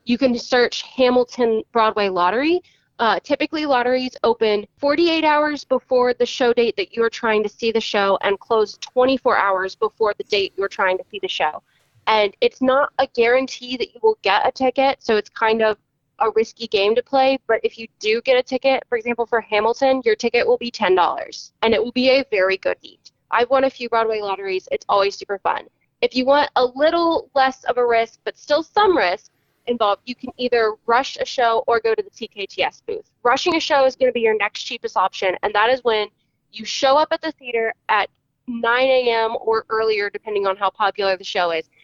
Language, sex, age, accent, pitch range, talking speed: English, female, 20-39, American, 205-260 Hz, 215 wpm